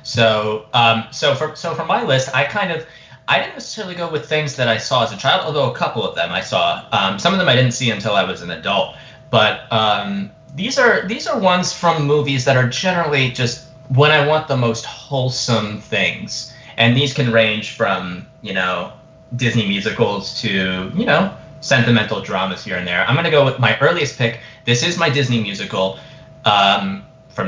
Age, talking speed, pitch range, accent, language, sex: 20-39, 205 wpm, 110-150 Hz, American, English, male